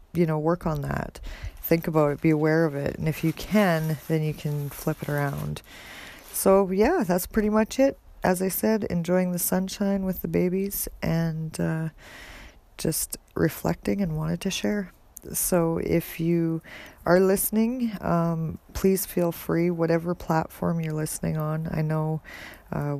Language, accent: English, American